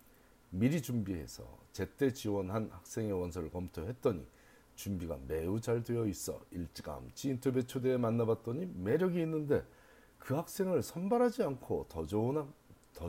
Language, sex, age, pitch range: Korean, male, 40-59, 90-130 Hz